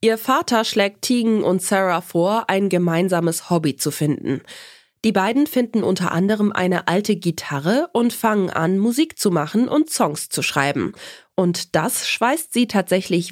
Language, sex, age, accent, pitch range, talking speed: German, female, 20-39, German, 170-230 Hz, 160 wpm